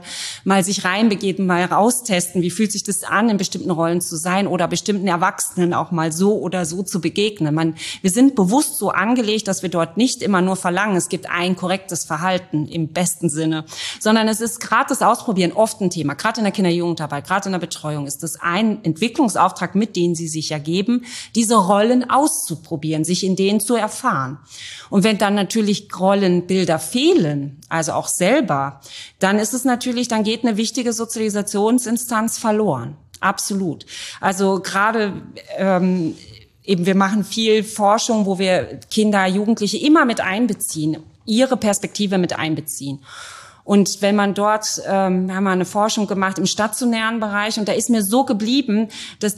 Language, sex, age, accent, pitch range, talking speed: German, female, 30-49, German, 175-220 Hz, 170 wpm